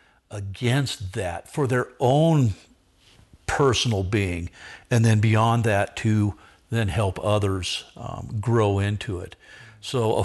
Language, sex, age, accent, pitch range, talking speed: English, male, 50-69, American, 105-120 Hz, 125 wpm